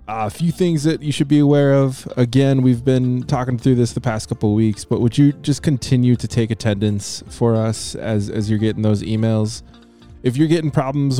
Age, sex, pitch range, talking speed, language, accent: 20-39, male, 105-130 Hz, 220 wpm, English, American